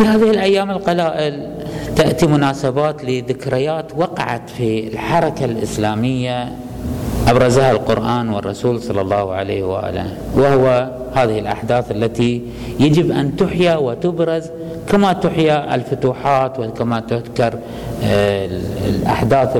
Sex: male